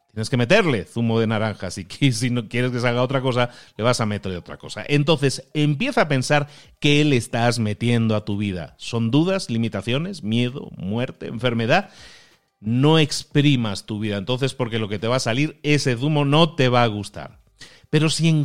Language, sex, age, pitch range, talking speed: Spanish, male, 40-59, 115-160 Hz, 190 wpm